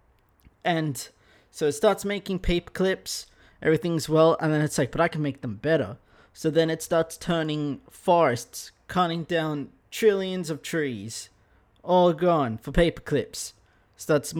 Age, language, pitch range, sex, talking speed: 20-39, English, 150-190 Hz, male, 150 wpm